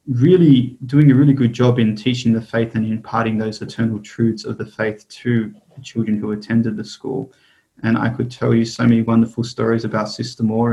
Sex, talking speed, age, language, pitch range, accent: male, 205 wpm, 20-39, English, 110-125 Hz, Australian